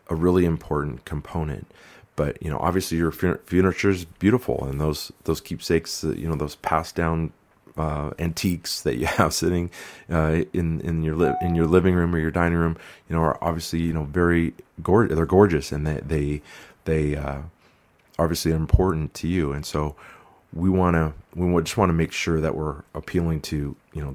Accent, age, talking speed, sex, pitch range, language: American, 30-49, 190 wpm, male, 75-90 Hz, English